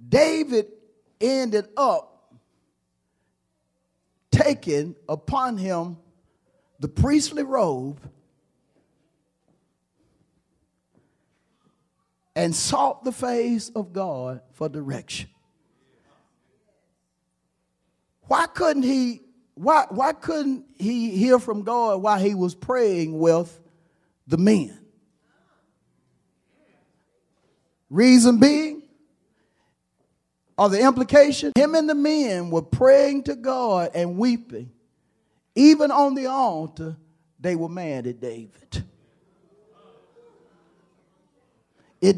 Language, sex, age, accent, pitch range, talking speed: English, male, 40-59, American, 160-265 Hz, 85 wpm